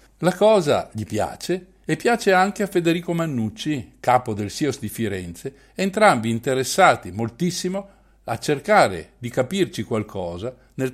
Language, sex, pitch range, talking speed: Italian, male, 110-165 Hz, 130 wpm